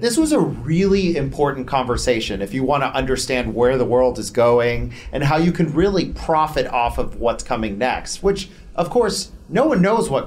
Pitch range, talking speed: 120-165 Hz, 200 wpm